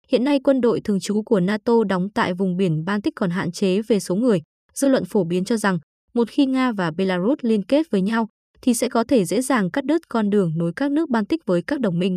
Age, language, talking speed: 20-39, Vietnamese, 255 wpm